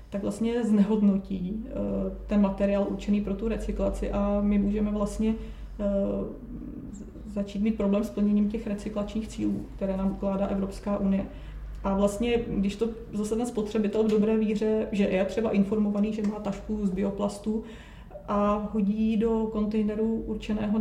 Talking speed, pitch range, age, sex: 145 wpm, 195-215 Hz, 30-49, female